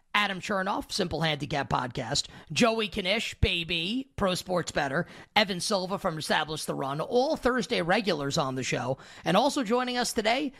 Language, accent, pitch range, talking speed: English, American, 160-220 Hz, 160 wpm